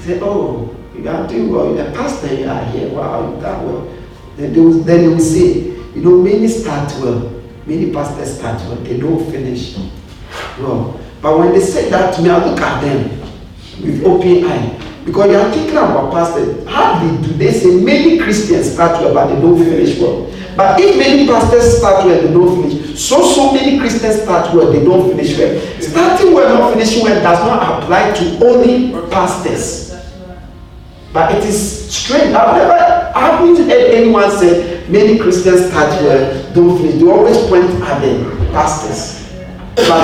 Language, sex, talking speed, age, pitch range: English, male, 185 wpm, 40-59, 165-235 Hz